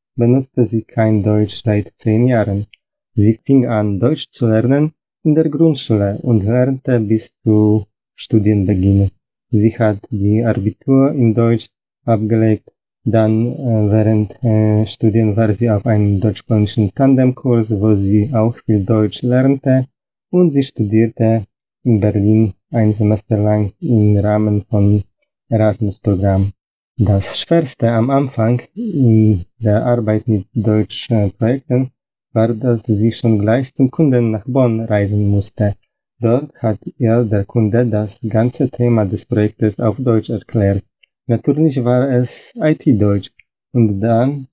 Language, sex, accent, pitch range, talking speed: Polish, male, native, 105-125 Hz, 135 wpm